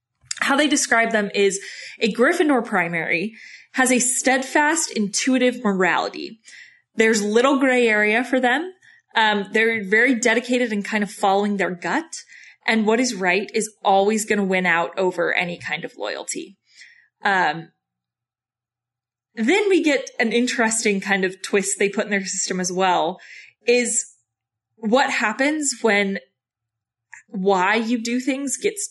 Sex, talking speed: female, 145 wpm